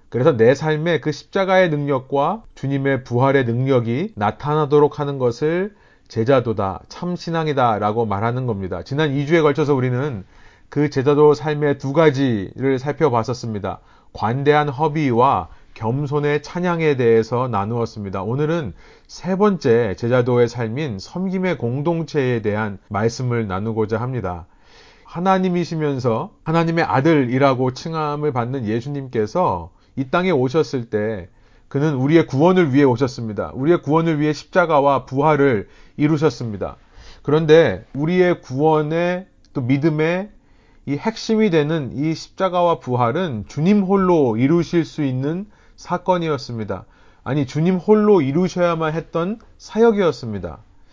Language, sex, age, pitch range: Korean, male, 40-59, 120-165 Hz